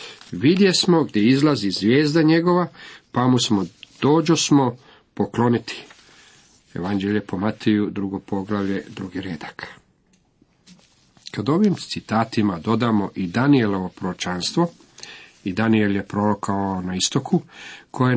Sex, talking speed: male, 110 wpm